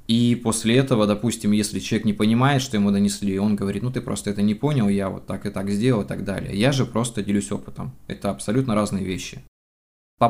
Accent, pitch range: native, 105-130 Hz